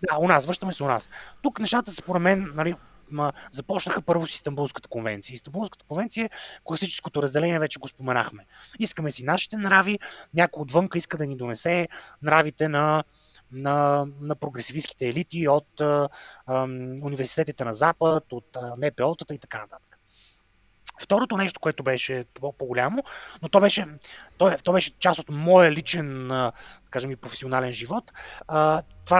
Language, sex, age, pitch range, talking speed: English, male, 30-49, 130-170 Hz, 150 wpm